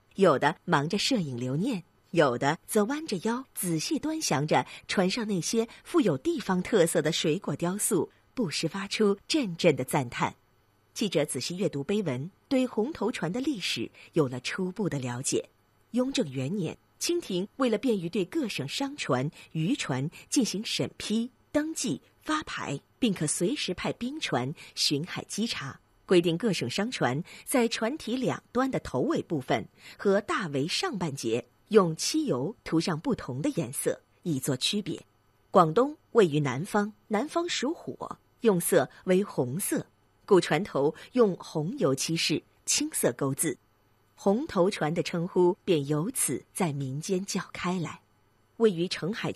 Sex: female